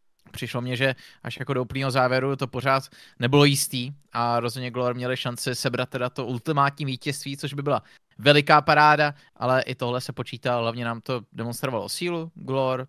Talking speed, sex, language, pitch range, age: 175 wpm, male, Czech, 120-135 Hz, 20-39